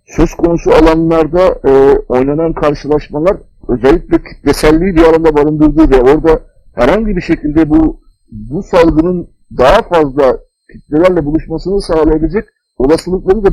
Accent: native